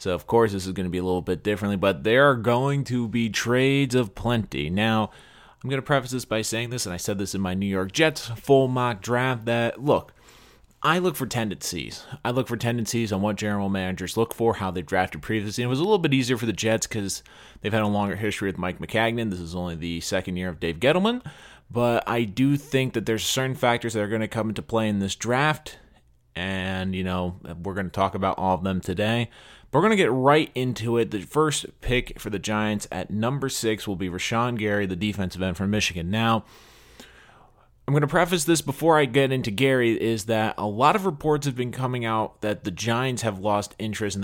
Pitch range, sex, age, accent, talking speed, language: 100-125 Hz, male, 30-49, American, 235 wpm, English